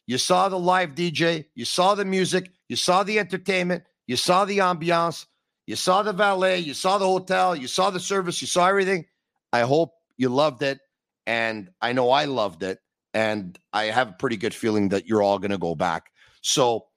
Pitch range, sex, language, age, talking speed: 110-155 Hz, male, English, 50-69, 205 wpm